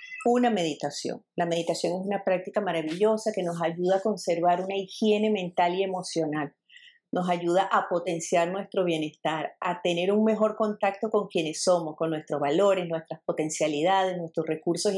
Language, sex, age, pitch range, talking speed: English, female, 40-59, 175-220 Hz, 155 wpm